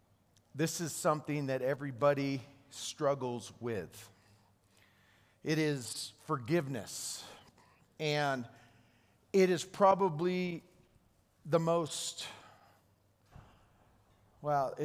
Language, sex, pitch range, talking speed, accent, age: English, male, 110-150 Hz, 70 wpm, American, 40-59